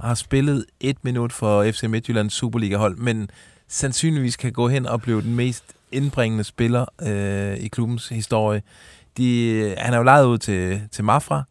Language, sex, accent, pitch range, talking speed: Danish, male, native, 105-130 Hz, 165 wpm